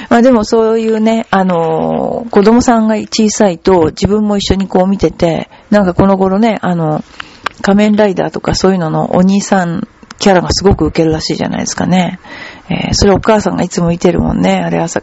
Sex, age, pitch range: female, 50-69, 165-210 Hz